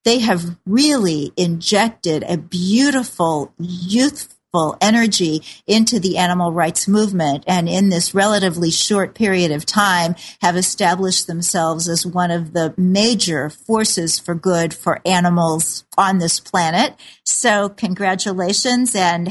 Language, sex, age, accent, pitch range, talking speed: English, female, 50-69, American, 175-215 Hz, 125 wpm